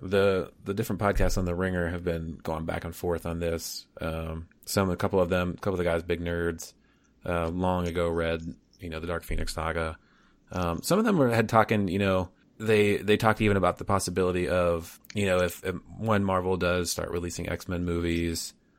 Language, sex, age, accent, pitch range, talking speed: English, male, 30-49, American, 85-100 Hz, 210 wpm